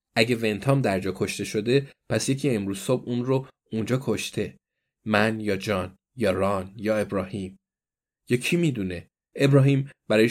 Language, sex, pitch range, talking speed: Persian, male, 110-145 Hz, 145 wpm